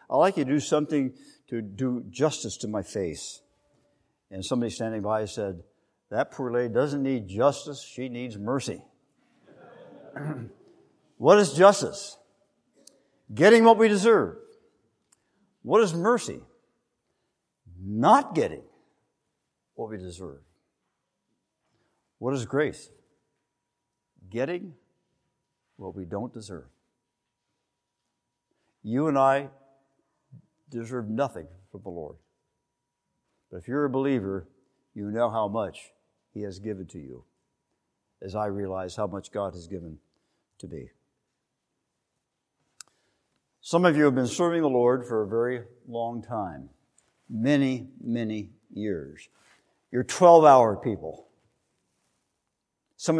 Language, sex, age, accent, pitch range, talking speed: English, male, 60-79, American, 105-145 Hz, 115 wpm